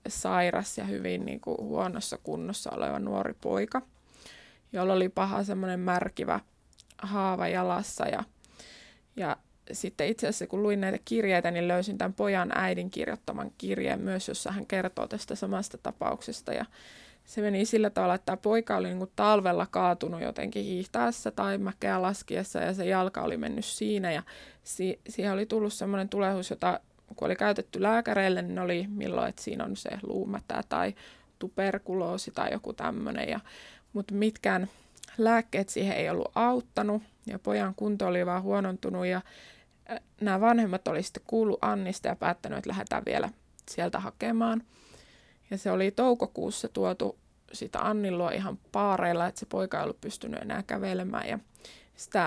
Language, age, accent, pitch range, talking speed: Finnish, 20-39, native, 180-210 Hz, 155 wpm